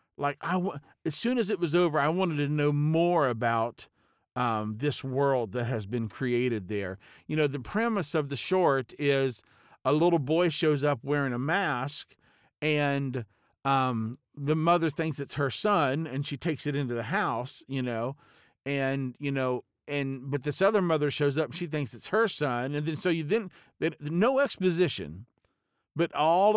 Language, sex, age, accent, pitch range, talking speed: English, male, 50-69, American, 125-165 Hz, 180 wpm